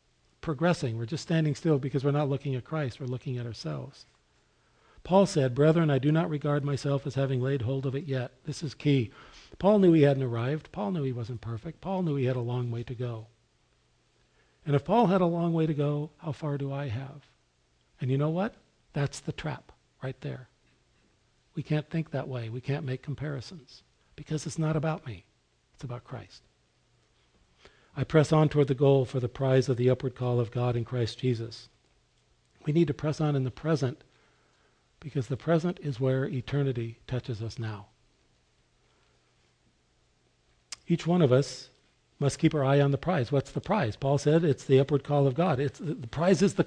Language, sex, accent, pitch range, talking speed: English, male, American, 125-160 Hz, 195 wpm